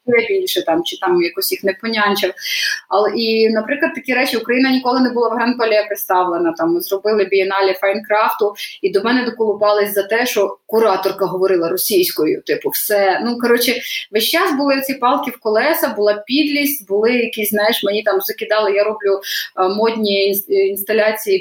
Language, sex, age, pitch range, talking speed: Ukrainian, female, 20-39, 200-270 Hz, 165 wpm